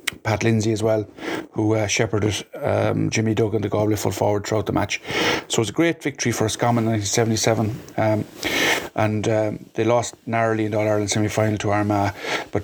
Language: English